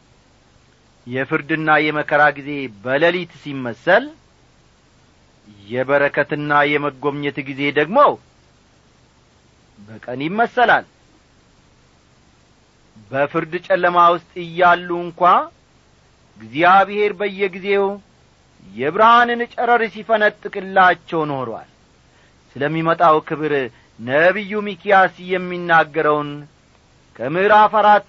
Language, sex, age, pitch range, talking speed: Amharic, male, 40-59, 140-190 Hz, 60 wpm